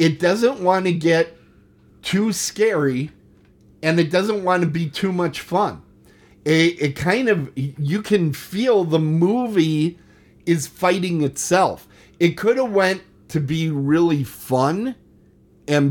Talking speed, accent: 140 wpm, American